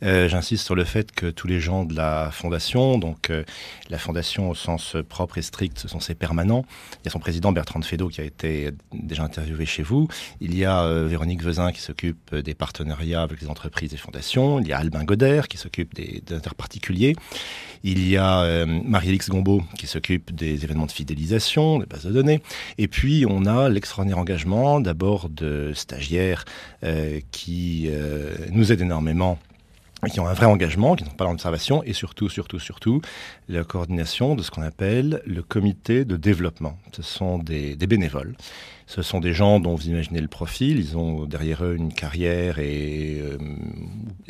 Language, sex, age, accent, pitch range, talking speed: French, male, 40-59, French, 80-105 Hz, 190 wpm